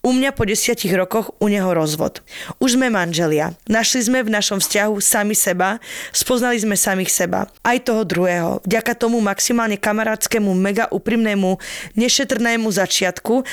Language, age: Slovak, 20-39